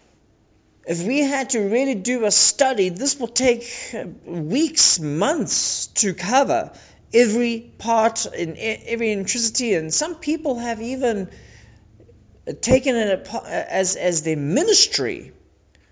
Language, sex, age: English, male, 40-59